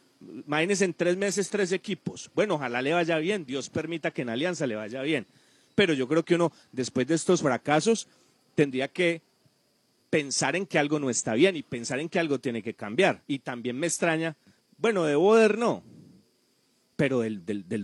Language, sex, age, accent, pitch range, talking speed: Spanish, male, 40-59, Colombian, 130-170 Hz, 190 wpm